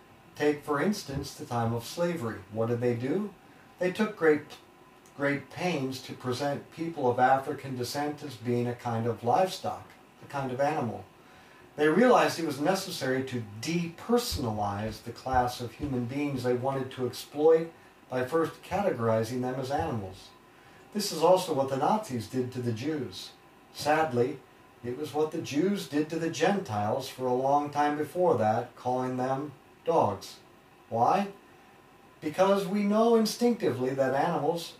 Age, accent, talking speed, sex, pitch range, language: 50-69, American, 155 wpm, male, 120-160 Hz, English